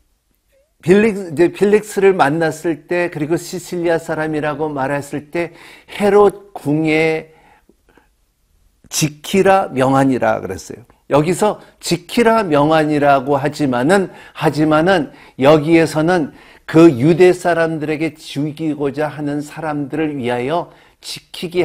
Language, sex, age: Korean, male, 50-69